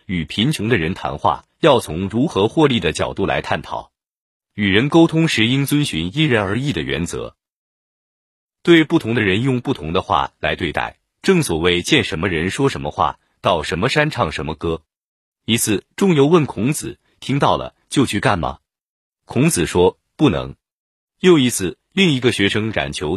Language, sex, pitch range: Chinese, male, 85-140 Hz